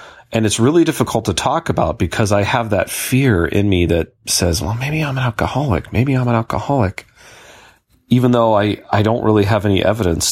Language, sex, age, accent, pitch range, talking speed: English, male, 40-59, American, 90-110 Hz, 200 wpm